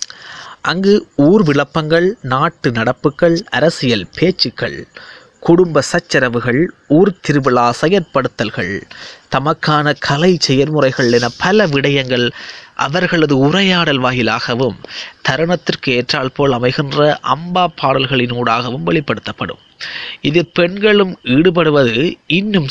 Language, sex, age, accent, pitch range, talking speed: Tamil, male, 20-39, native, 125-175 Hz, 85 wpm